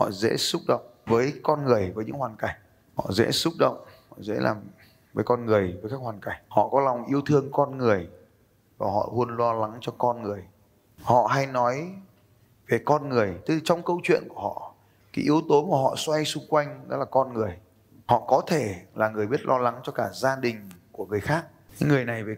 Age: 20-39